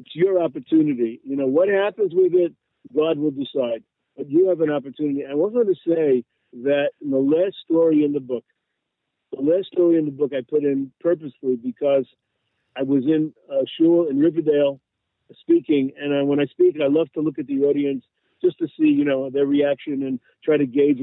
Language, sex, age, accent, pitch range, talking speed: English, male, 50-69, American, 135-170 Hz, 205 wpm